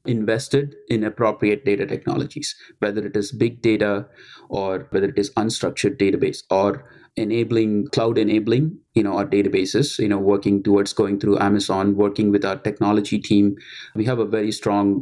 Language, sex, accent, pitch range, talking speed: English, male, Indian, 105-130 Hz, 165 wpm